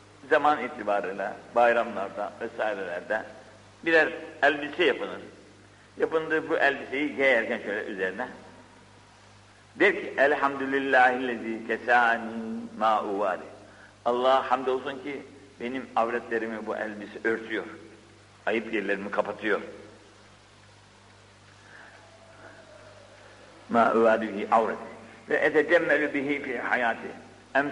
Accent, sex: native, male